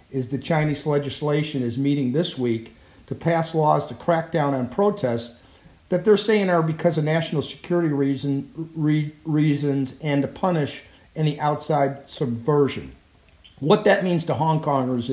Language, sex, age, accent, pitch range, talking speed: English, male, 50-69, American, 135-160 Hz, 145 wpm